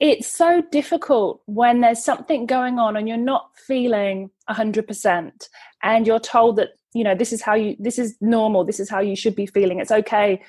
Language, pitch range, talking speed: English, 210-265 Hz, 210 wpm